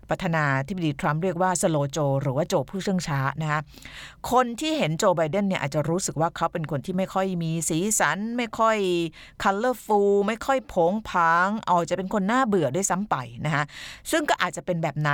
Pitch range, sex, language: 150-205 Hz, female, Thai